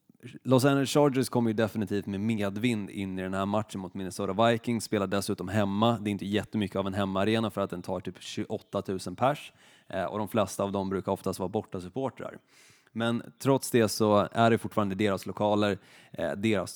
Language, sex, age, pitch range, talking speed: Swedish, male, 20-39, 100-120 Hz, 190 wpm